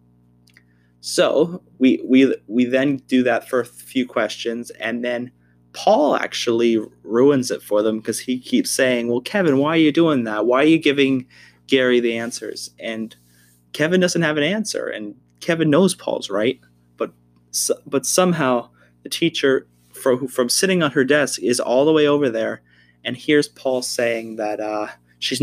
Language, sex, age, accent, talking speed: English, male, 20-39, American, 170 wpm